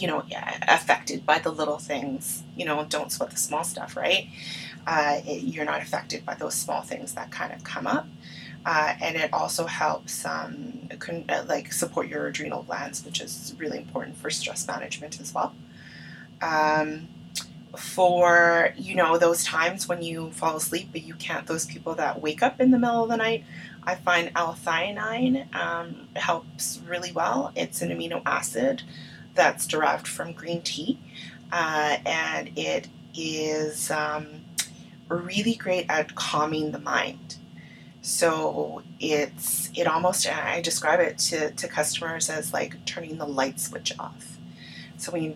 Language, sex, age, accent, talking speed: English, female, 20-39, American, 160 wpm